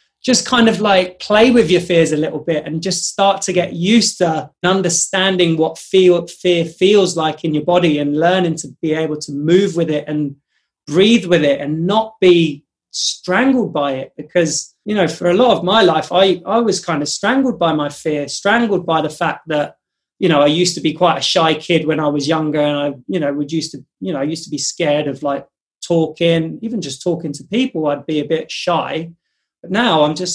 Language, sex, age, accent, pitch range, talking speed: English, male, 20-39, British, 155-190 Hz, 215 wpm